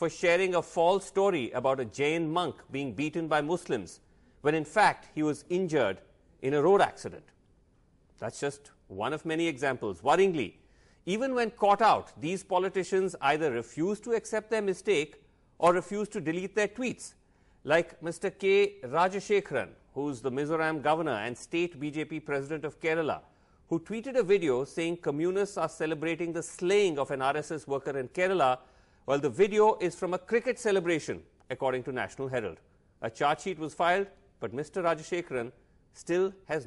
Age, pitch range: 40-59, 140-195 Hz